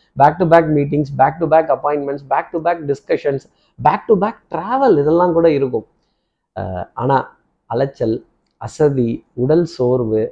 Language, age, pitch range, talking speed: Tamil, 20-39, 135-185 Hz, 140 wpm